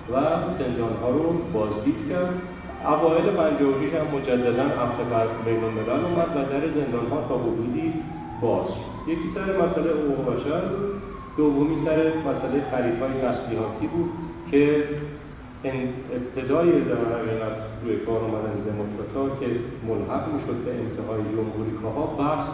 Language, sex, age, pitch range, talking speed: Persian, male, 40-59, 110-150 Hz, 140 wpm